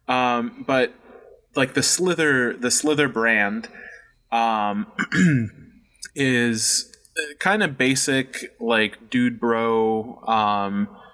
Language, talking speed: English, 90 wpm